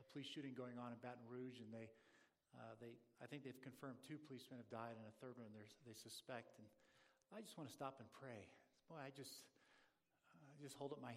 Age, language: 50-69, English